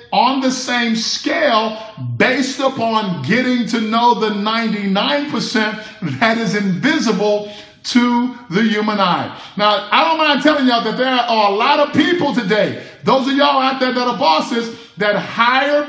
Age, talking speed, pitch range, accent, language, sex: 50-69, 160 wpm, 210-260 Hz, American, English, male